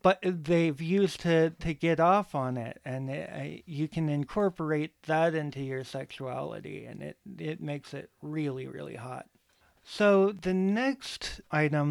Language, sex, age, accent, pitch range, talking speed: English, male, 40-59, American, 140-175 Hz, 150 wpm